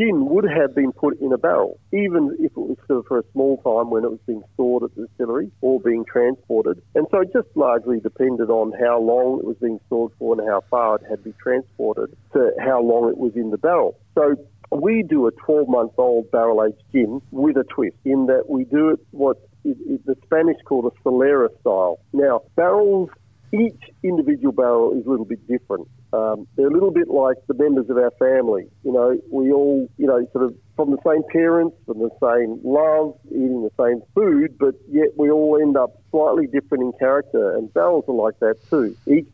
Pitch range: 120-155 Hz